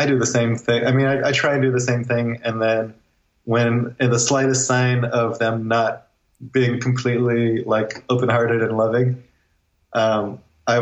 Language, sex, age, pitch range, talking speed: English, male, 20-39, 110-125 Hz, 190 wpm